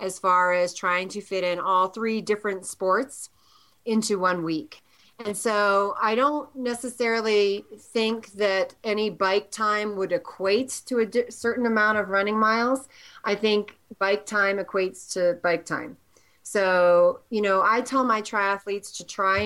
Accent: American